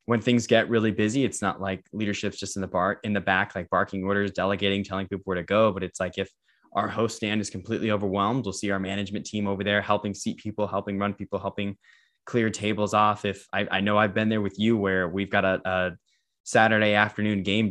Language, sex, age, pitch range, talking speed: English, male, 10-29, 95-105 Hz, 235 wpm